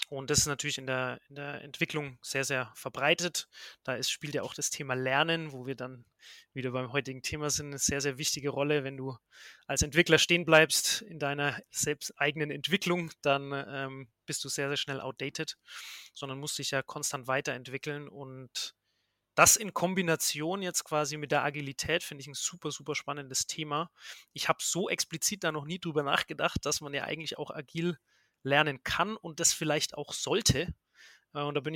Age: 30-49